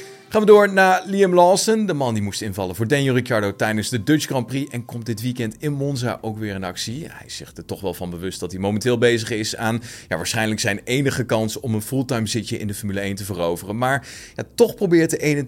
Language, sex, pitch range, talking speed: Dutch, male, 100-150 Hz, 235 wpm